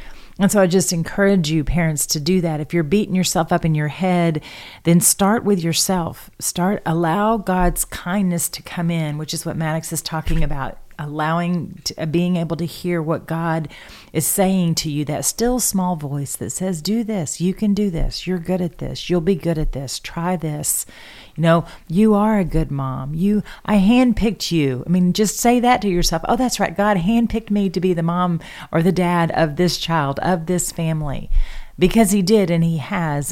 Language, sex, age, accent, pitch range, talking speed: English, female, 40-59, American, 160-195 Hz, 205 wpm